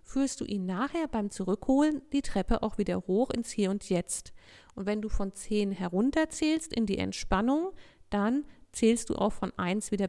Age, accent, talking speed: 50-69, German, 185 wpm